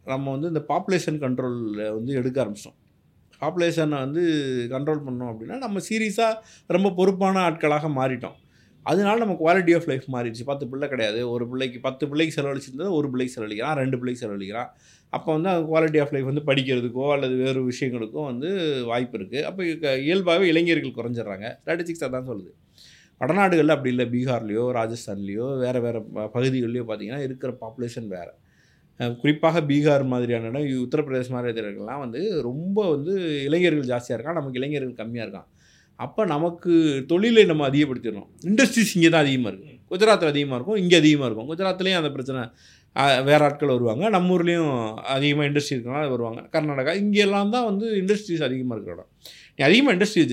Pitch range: 125-165 Hz